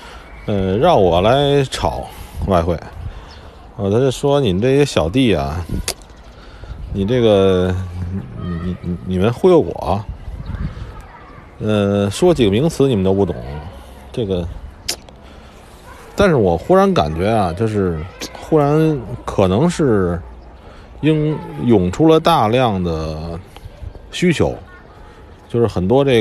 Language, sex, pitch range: Chinese, male, 85-115 Hz